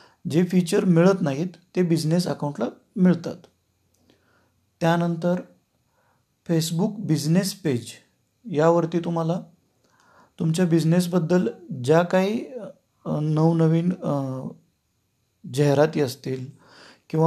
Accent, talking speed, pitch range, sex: native, 55 wpm, 145-180 Hz, male